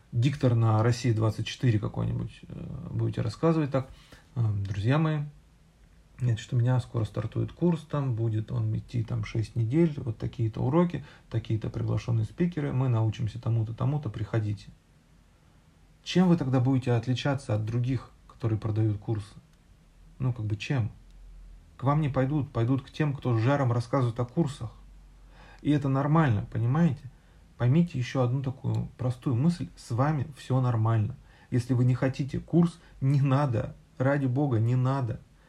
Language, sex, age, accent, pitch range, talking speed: Russian, male, 40-59, native, 115-150 Hz, 140 wpm